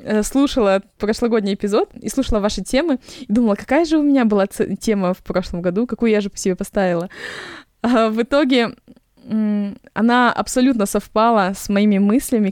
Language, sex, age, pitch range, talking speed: Russian, female, 20-39, 190-240 Hz, 160 wpm